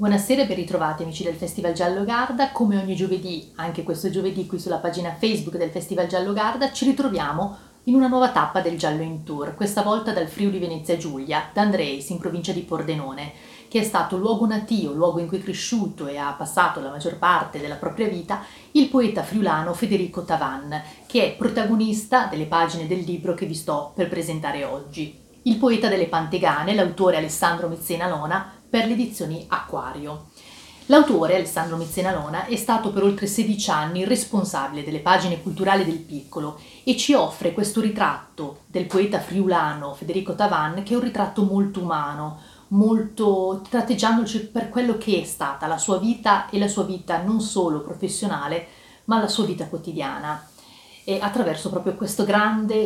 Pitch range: 165-215 Hz